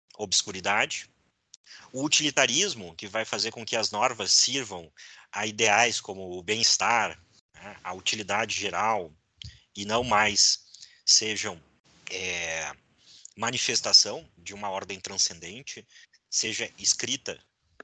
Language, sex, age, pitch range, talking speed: Portuguese, male, 30-49, 100-130 Hz, 100 wpm